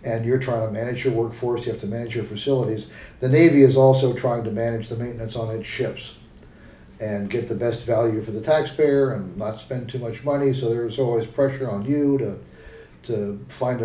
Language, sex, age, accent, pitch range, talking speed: English, male, 50-69, American, 115-130 Hz, 210 wpm